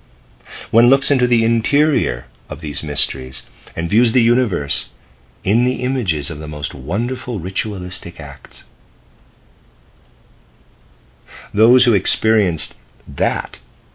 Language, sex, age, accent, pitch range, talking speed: English, male, 50-69, American, 75-115 Hz, 110 wpm